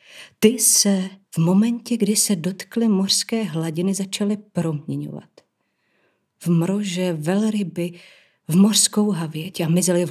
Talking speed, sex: 120 wpm, female